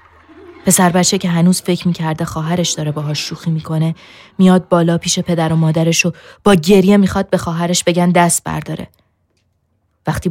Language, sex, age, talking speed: Persian, female, 20-39, 150 wpm